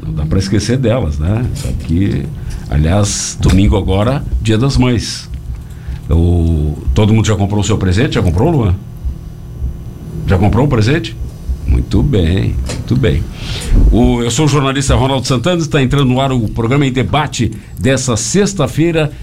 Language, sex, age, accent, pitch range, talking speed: Portuguese, male, 60-79, Brazilian, 100-135 Hz, 155 wpm